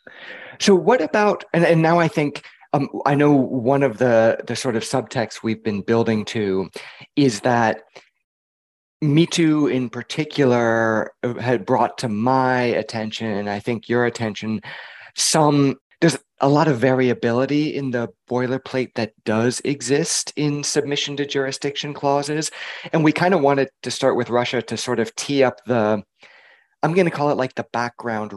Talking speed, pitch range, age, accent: 165 wpm, 110-145 Hz, 30-49, American